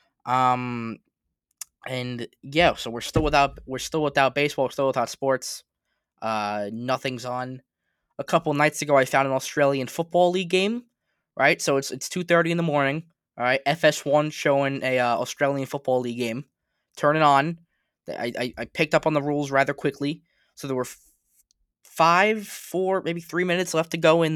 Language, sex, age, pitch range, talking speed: English, male, 20-39, 130-165 Hz, 185 wpm